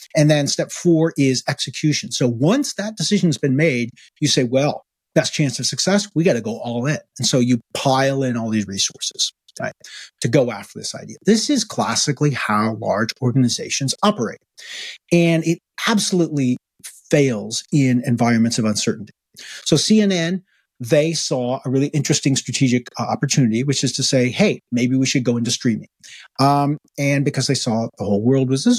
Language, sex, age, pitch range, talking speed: English, male, 40-59, 120-150 Hz, 175 wpm